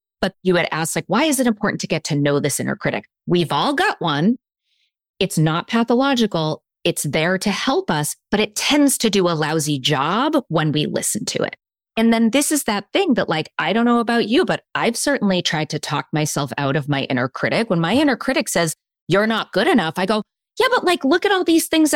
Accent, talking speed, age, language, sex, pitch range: American, 230 wpm, 30-49, English, female, 160-230 Hz